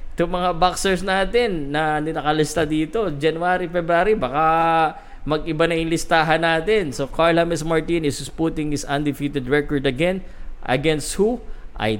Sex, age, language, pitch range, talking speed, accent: male, 20-39, Filipino, 120-160 Hz, 120 wpm, native